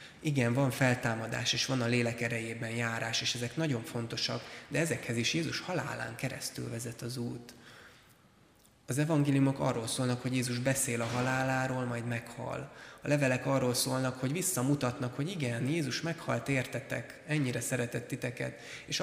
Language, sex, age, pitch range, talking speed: Hungarian, male, 20-39, 115-130 Hz, 150 wpm